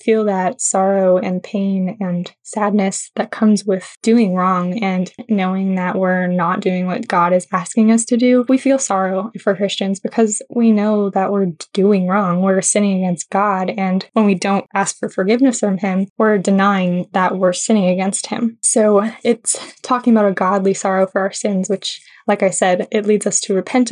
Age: 10-29